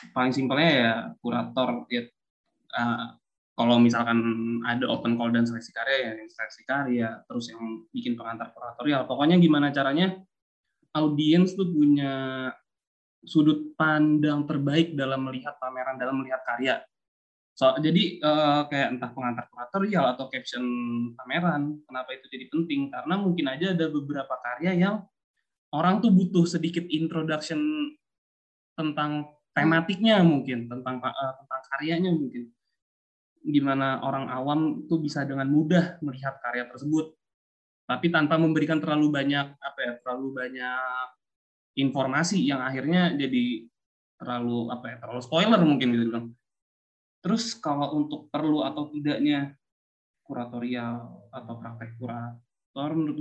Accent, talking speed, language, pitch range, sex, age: native, 125 wpm, Indonesian, 120-155 Hz, male, 20-39